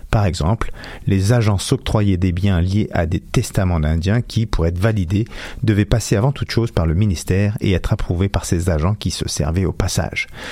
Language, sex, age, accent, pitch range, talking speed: French, male, 50-69, French, 95-115 Hz, 200 wpm